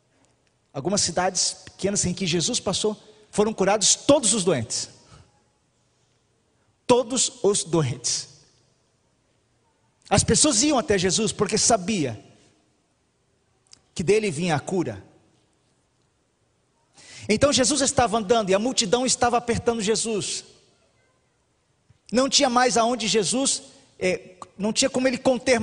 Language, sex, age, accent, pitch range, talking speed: Portuguese, male, 40-59, Brazilian, 175-245 Hz, 110 wpm